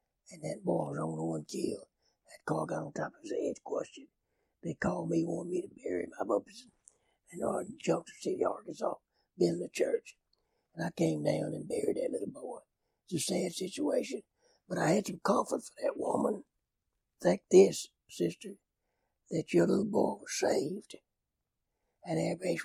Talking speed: 175 wpm